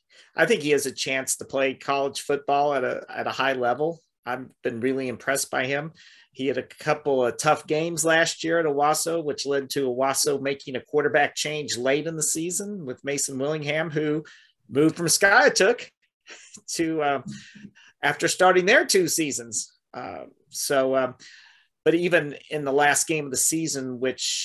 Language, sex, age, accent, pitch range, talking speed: English, male, 40-59, American, 130-160 Hz, 175 wpm